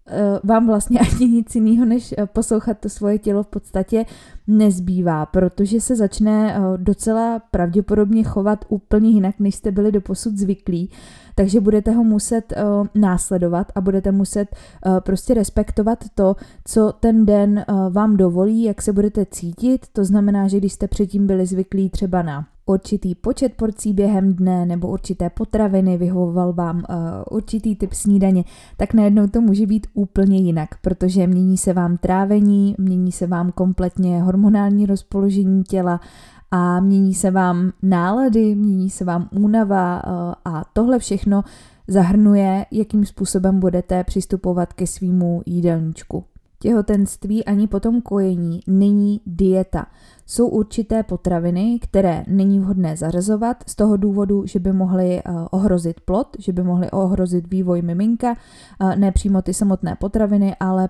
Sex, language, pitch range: female, Czech, 185-210 Hz